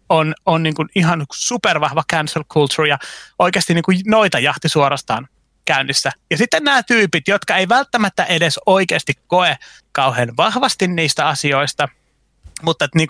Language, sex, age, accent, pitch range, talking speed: Finnish, male, 30-49, native, 145-195 Hz, 145 wpm